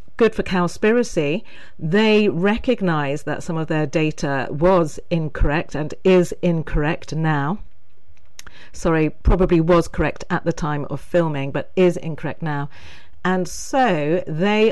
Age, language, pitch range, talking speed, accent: 40-59, English, 155-195 Hz, 130 wpm, British